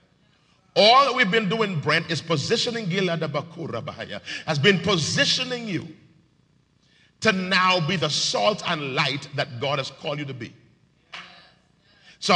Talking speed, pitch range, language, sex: 145 wpm, 160-210 Hz, English, male